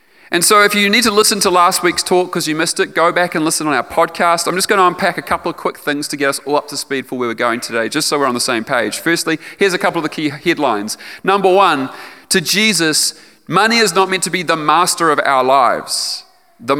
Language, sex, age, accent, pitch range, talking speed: English, male, 30-49, Australian, 145-195 Hz, 265 wpm